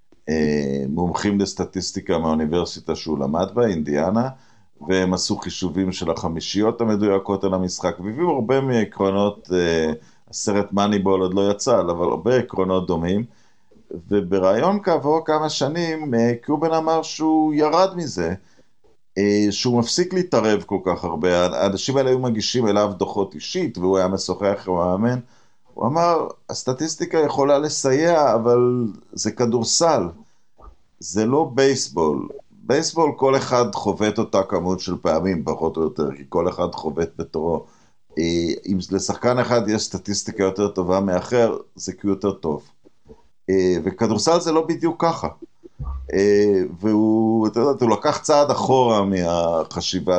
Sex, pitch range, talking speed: male, 90-135 Hz, 125 wpm